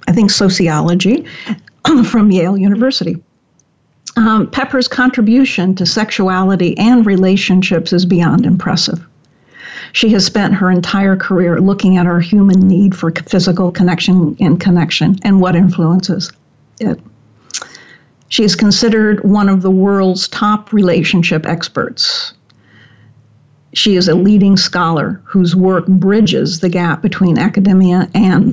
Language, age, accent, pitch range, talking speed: English, 50-69, American, 175-205 Hz, 125 wpm